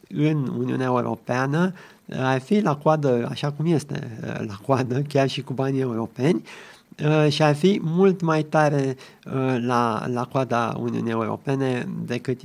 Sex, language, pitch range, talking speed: male, Romanian, 130-155 Hz, 140 wpm